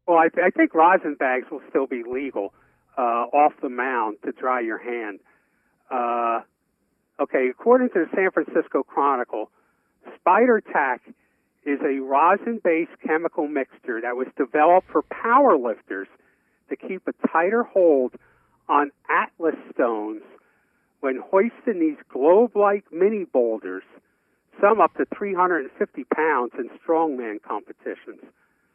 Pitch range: 130-205 Hz